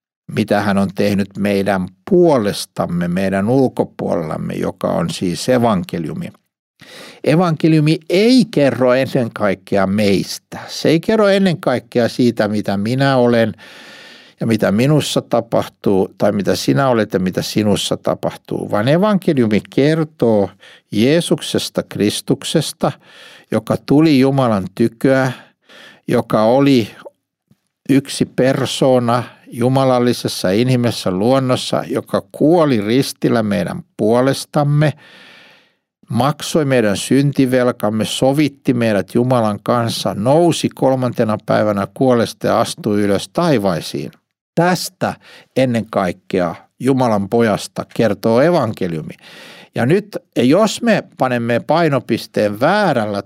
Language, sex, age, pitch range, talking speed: Finnish, male, 60-79, 105-140 Hz, 100 wpm